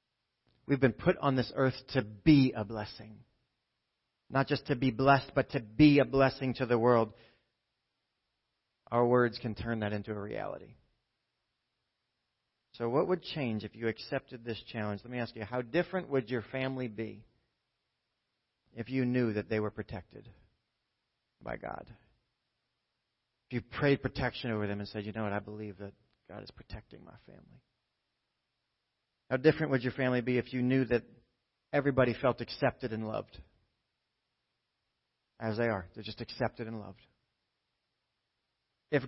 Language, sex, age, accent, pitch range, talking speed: English, male, 40-59, American, 110-140 Hz, 155 wpm